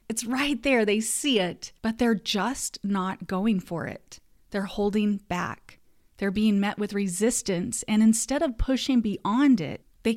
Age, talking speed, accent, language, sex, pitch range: 30-49, 165 wpm, American, English, female, 190-240 Hz